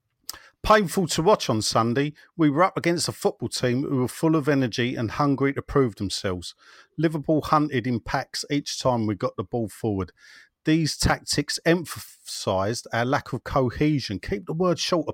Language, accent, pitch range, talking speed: English, British, 110-150 Hz, 175 wpm